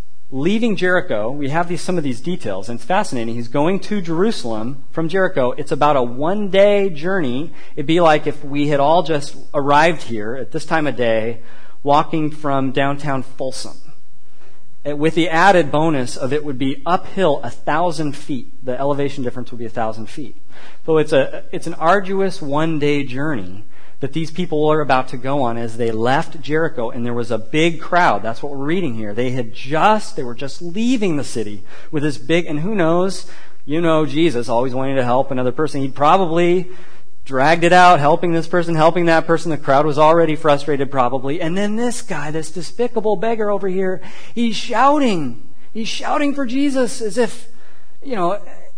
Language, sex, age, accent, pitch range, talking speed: English, male, 40-59, American, 135-180 Hz, 185 wpm